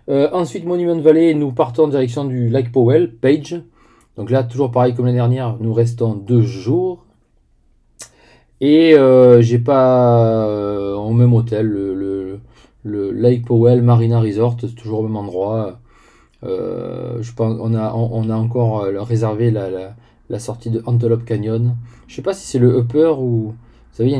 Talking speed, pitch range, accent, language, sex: 175 wpm, 115-130 Hz, French, English, male